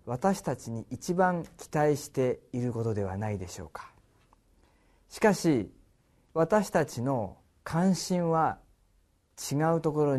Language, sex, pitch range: Japanese, male, 105-160 Hz